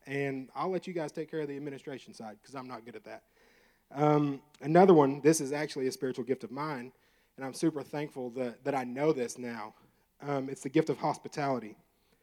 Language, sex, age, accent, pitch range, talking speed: English, male, 30-49, American, 130-160 Hz, 215 wpm